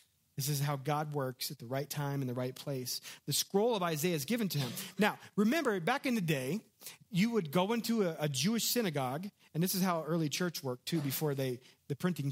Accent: American